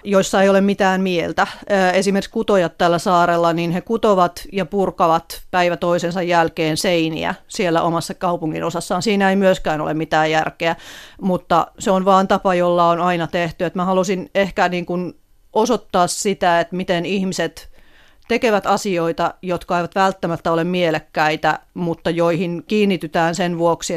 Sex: female